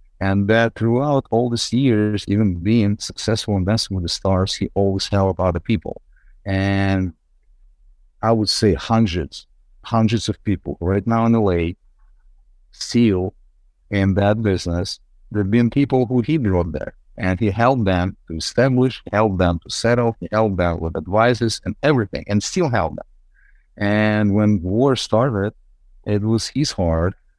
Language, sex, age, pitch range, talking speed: English, male, 50-69, 95-115 Hz, 155 wpm